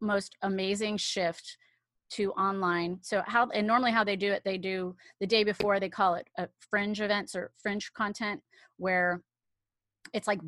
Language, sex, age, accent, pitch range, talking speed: English, female, 30-49, American, 180-205 Hz, 170 wpm